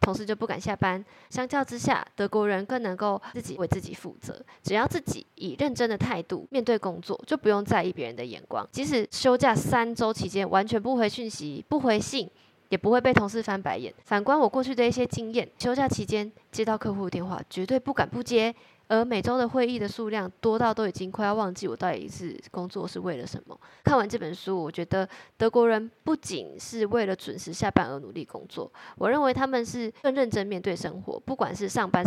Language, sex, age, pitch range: Chinese, female, 20-39, 195-245 Hz